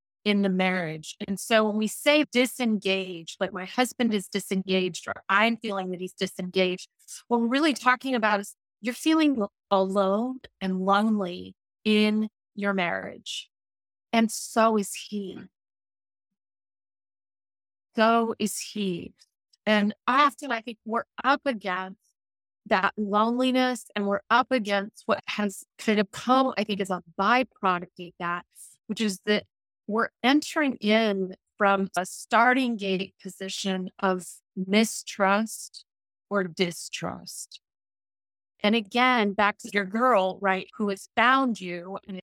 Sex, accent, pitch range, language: female, American, 185-225 Hz, English